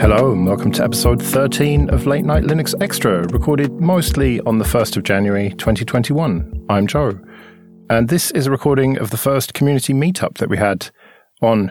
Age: 40-59